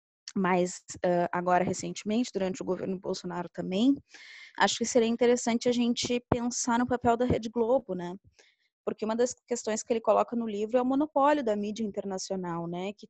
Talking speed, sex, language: 175 wpm, female, Portuguese